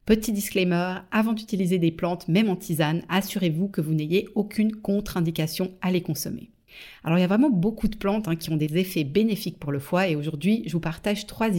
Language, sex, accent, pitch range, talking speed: French, female, French, 165-205 Hz, 210 wpm